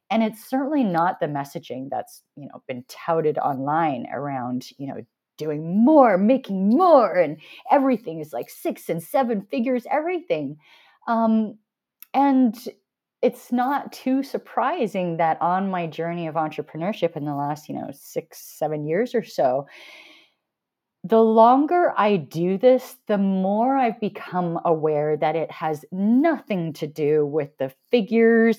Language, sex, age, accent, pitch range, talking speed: English, female, 30-49, American, 160-245 Hz, 145 wpm